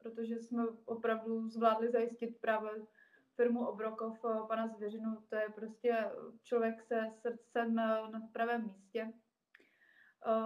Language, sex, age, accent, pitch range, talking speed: Czech, female, 20-39, native, 220-235 Hz, 120 wpm